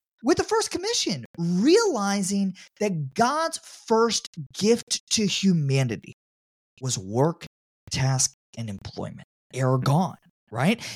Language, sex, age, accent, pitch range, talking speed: English, male, 30-49, American, 140-205 Hz, 105 wpm